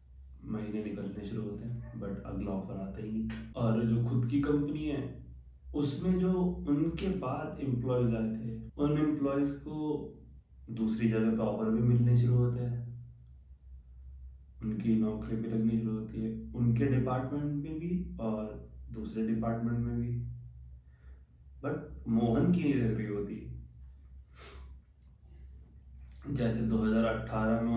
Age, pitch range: 20-39, 100-120 Hz